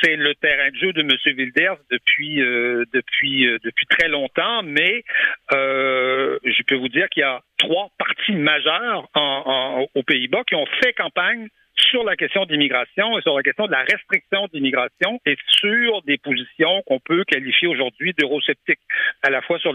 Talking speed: 175 wpm